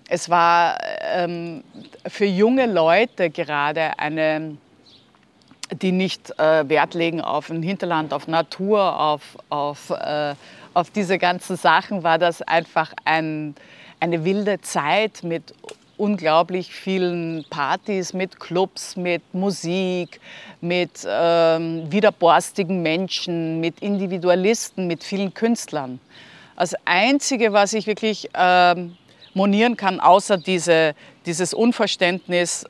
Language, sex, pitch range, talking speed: German, female, 165-195 Hz, 105 wpm